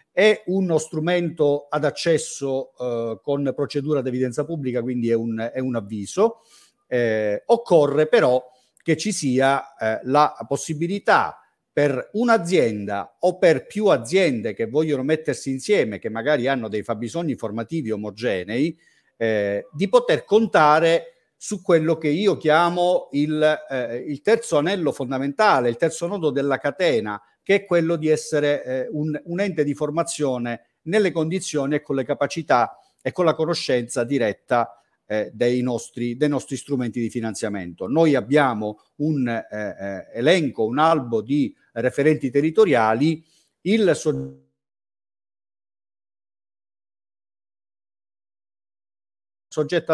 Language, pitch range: Italian, 115-165 Hz